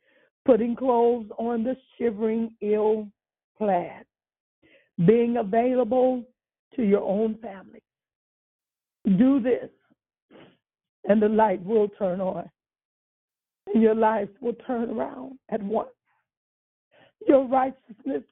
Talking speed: 100 wpm